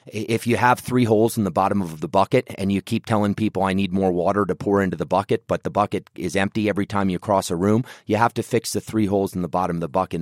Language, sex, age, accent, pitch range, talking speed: English, male, 30-49, American, 95-115 Hz, 290 wpm